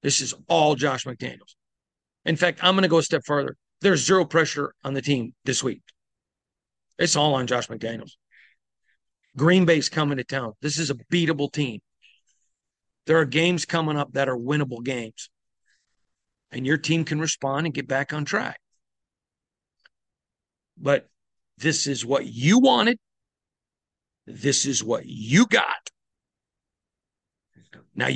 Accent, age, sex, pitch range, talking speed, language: American, 40-59, male, 130-165 Hz, 145 wpm, English